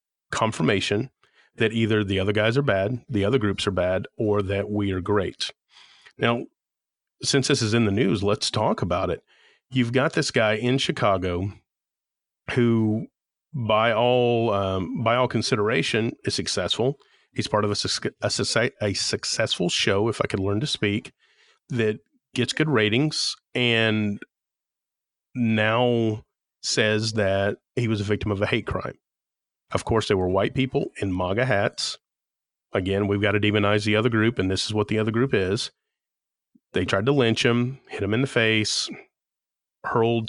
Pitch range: 100-120 Hz